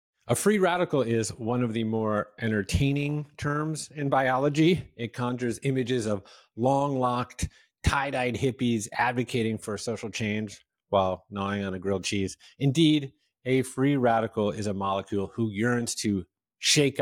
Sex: male